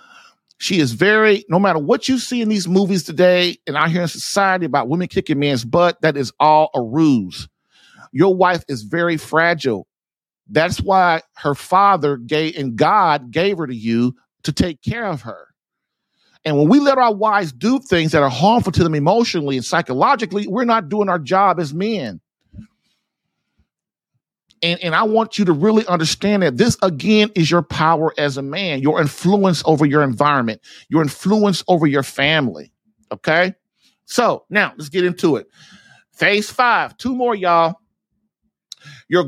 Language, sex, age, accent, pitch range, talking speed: English, male, 50-69, American, 155-210 Hz, 170 wpm